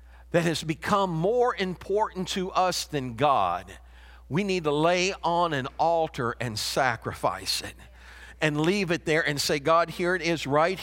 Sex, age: male, 50-69